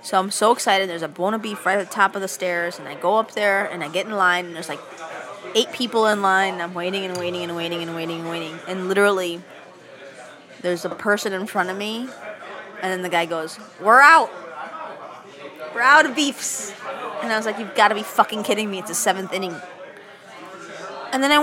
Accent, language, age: American, English, 20-39